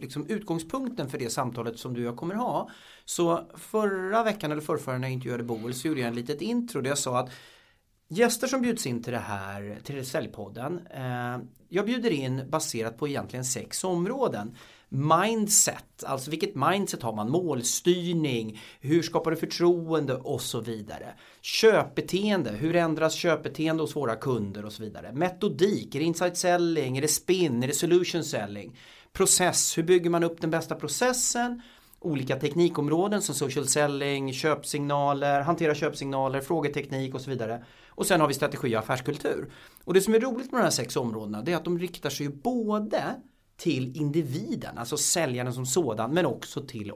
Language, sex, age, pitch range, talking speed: Swedish, male, 30-49, 130-195 Hz, 175 wpm